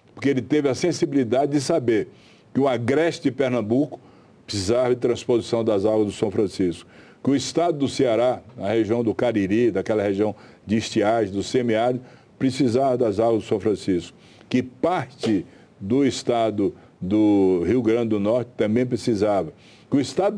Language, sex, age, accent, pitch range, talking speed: Portuguese, male, 60-79, Brazilian, 110-130 Hz, 160 wpm